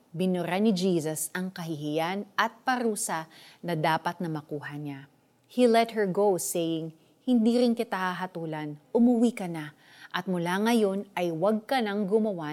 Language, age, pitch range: Filipino, 30-49, 170-245 Hz